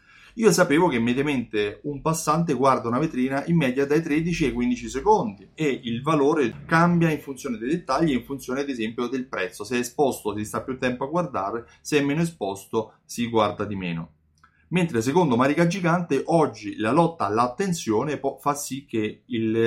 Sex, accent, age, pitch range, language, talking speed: male, native, 30-49, 110-145 Hz, Italian, 180 wpm